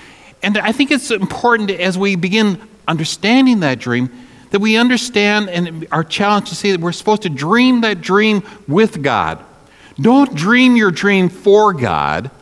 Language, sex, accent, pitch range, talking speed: English, male, American, 165-215 Hz, 165 wpm